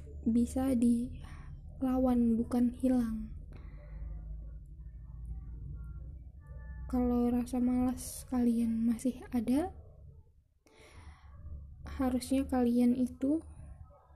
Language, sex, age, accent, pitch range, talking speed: Indonesian, female, 10-29, native, 225-255 Hz, 55 wpm